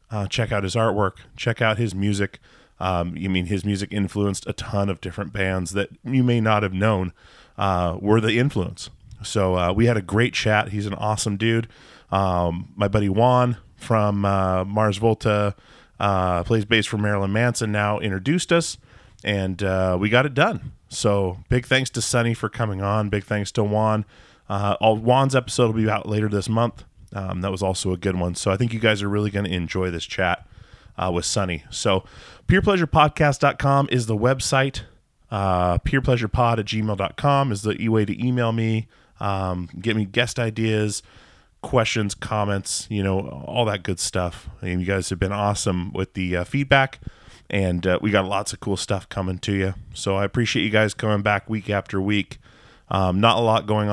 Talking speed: 190 wpm